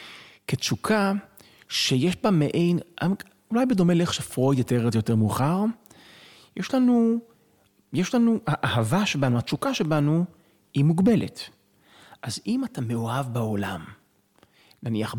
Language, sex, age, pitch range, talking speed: Hebrew, male, 30-49, 120-185 Hz, 115 wpm